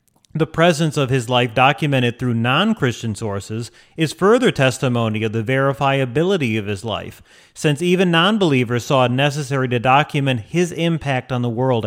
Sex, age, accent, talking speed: male, 40-59, American, 155 wpm